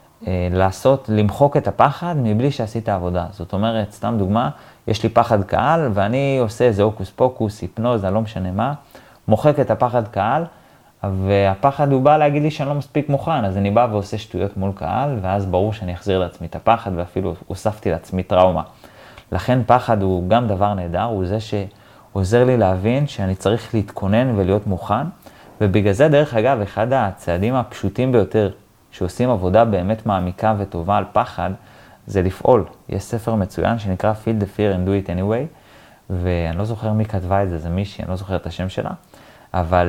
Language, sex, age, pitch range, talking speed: Hebrew, male, 30-49, 95-120 Hz, 175 wpm